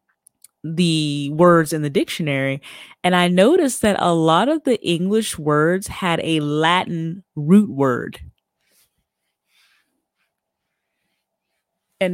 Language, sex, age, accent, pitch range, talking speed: English, female, 30-49, American, 150-175 Hz, 105 wpm